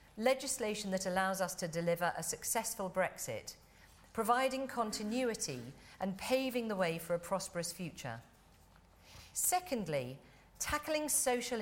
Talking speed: 115 wpm